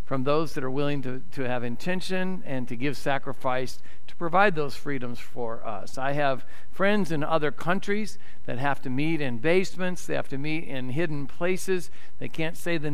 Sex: male